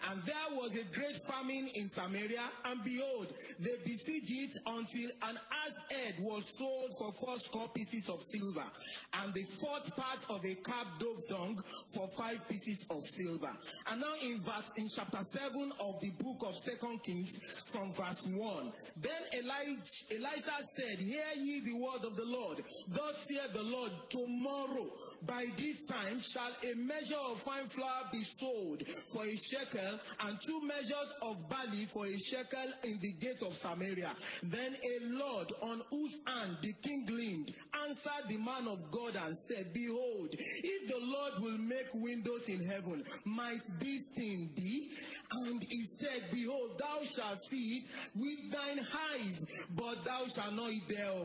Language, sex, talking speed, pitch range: English, male, 165 wpm, 210-270 Hz